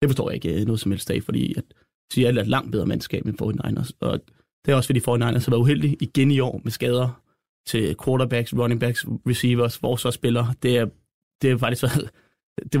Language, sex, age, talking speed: Danish, male, 30-49, 210 wpm